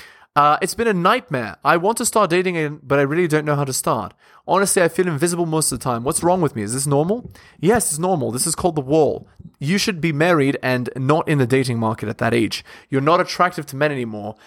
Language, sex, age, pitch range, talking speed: English, male, 20-39, 125-170 Hz, 250 wpm